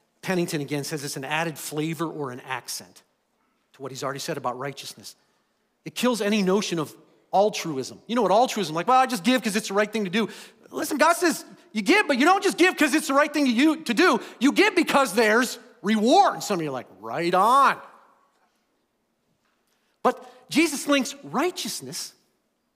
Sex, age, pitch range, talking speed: male, 40-59, 150-250 Hz, 190 wpm